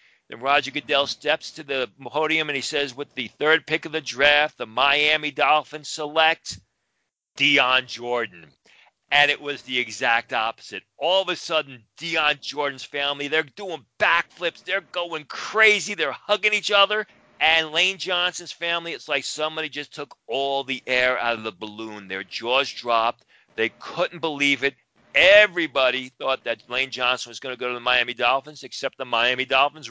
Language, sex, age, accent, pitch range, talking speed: English, male, 40-59, American, 120-155 Hz, 175 wpm